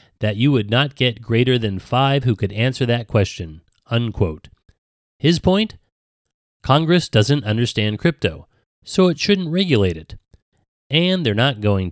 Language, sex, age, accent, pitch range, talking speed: English, male, 30-49, American, 105-135 Hz, 145 wpm